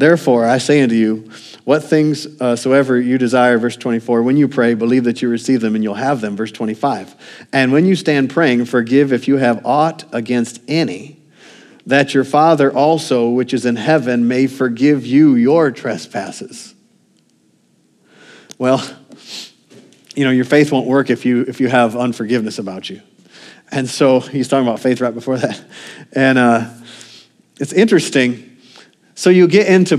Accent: American